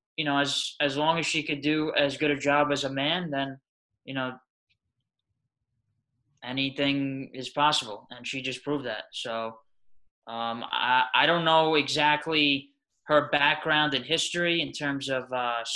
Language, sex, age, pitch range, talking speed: English, male, 20-39, 125-150 Hz, 160 wpm